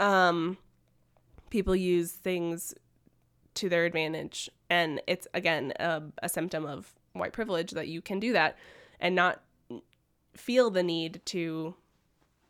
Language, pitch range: English, 165-195 Hz